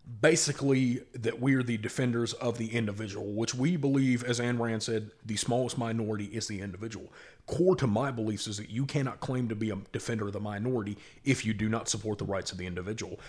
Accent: American